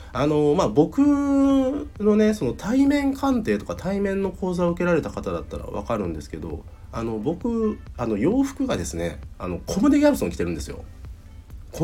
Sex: male